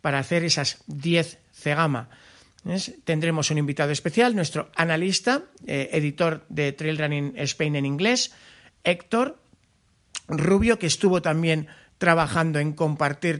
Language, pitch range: Spanish, 145-170 Hz